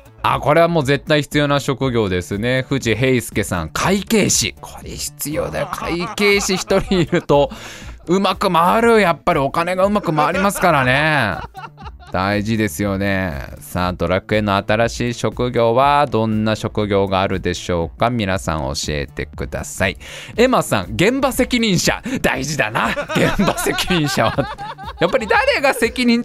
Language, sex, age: Japanese, male, 20-39